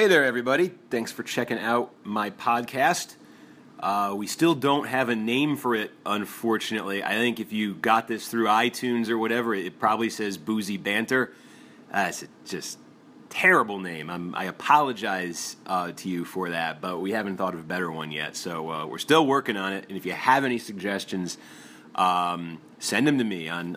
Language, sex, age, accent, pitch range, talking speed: English, male, 30-49, American, 90-115 Hz, 190 wpm